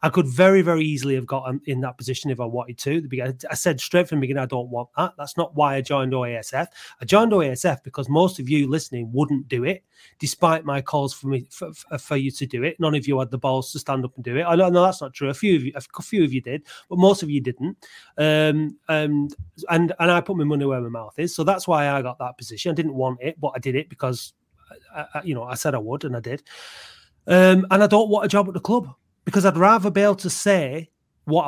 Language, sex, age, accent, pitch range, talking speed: English, male, 30-49, British, 135-175 Hz, 265 wpm